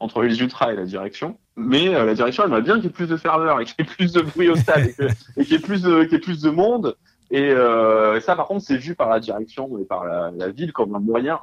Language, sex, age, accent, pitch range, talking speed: French, male, 20-39, French, 100-145 Hz, 305 wpm